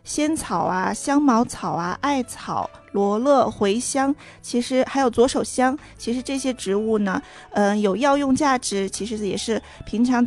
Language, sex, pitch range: Chinese, female, 205-250 Hz